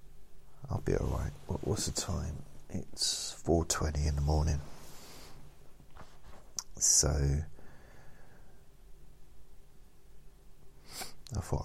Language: English